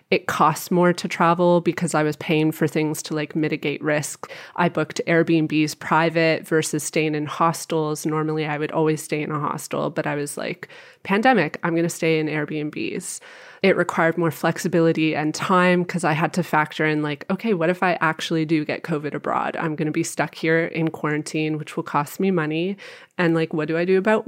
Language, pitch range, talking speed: English, 155-180 Hz, 210 wpm